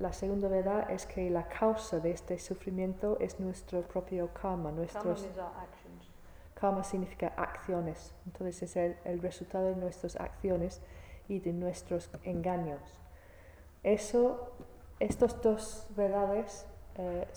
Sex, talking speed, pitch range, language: female, 115 wpm, 170-190 Hz, Italian